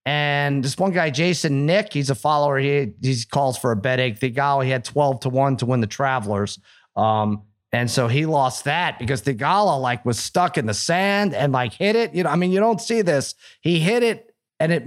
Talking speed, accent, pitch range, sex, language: 235 wpm, American, 135-175 Hz, male, English